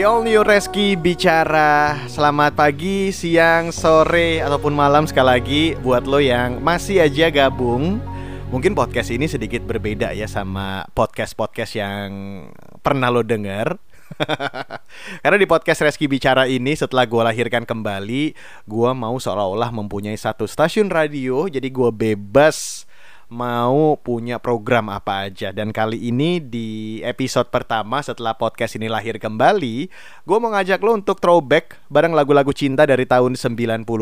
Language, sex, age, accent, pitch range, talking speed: Indonesian, male, 20-39, native, 120-160 Hz, 140 wpm